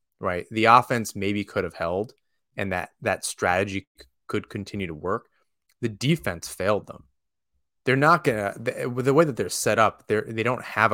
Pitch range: 90-110 Hz